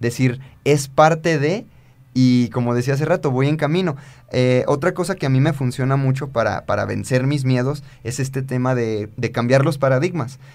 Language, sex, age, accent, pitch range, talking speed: Spanish, male, 30-49, Mexican, 120-145 Hz, 195 wpm